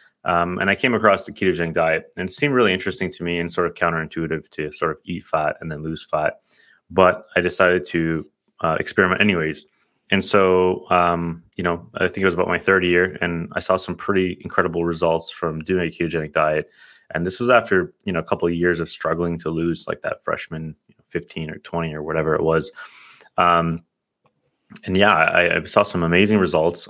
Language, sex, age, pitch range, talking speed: English, male, 20-39, 80-90 Hz, 205 wpm